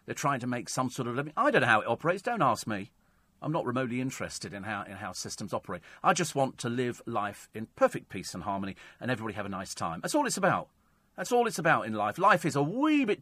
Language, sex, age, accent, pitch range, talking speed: English, male, 40-59, British, 115-185 Hz, 265 wpm